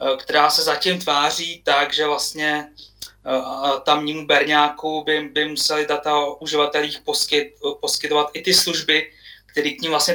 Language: Czech